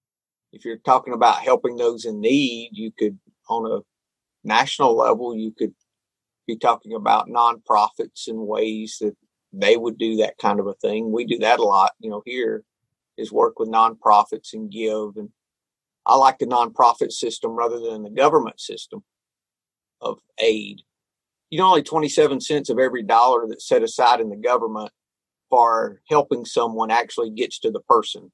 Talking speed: 170 wpm